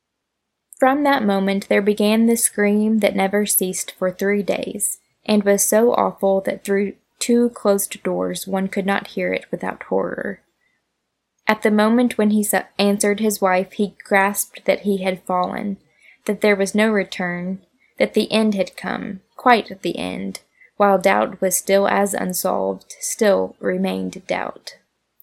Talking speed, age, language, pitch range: 155 wpm, 10-29, English, 190-225 Hz